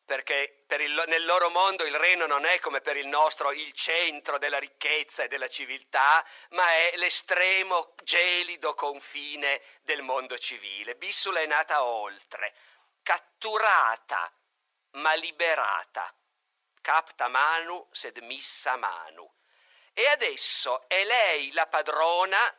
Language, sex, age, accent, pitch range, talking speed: Italian, male, 50-69, native, 150-190 Hz, 125 wpm